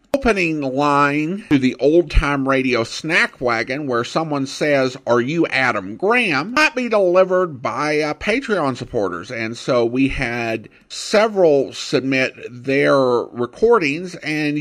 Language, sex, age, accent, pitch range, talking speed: English, male, 50-69, American, 120-165 Hz, 130 wpm